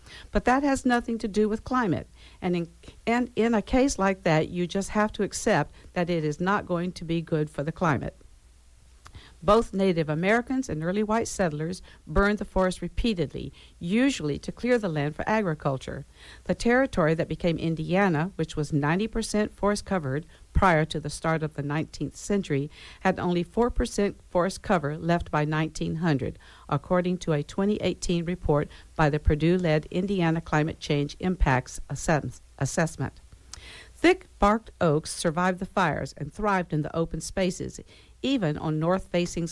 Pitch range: 155-200 Hz